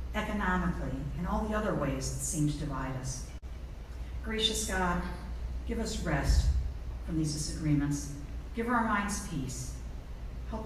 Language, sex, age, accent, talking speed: English, female, 50-69, American, 135 wpm